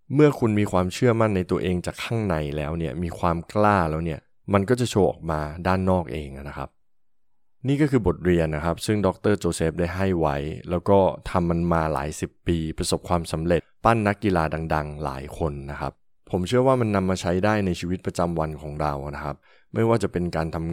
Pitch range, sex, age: 80-100 Hz, male, 20-39